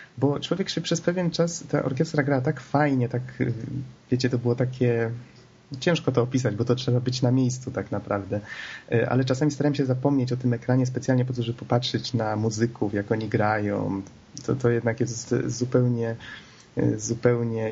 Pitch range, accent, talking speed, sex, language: 110-125 Hz, native, 175 wpm, male, Polish